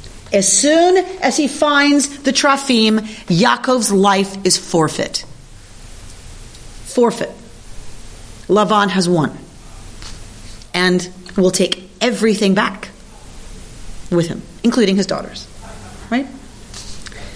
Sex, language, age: female, English, 40-59